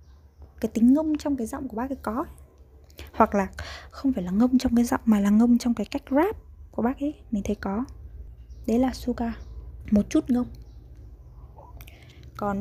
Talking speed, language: 185 wpm, Vietnamese